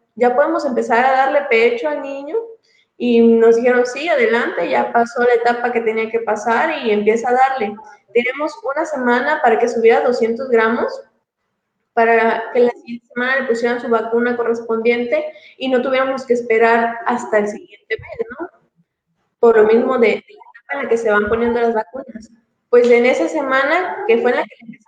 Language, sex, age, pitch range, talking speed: Spanish, female, 20-39, 225-280 Hz, 190 wpm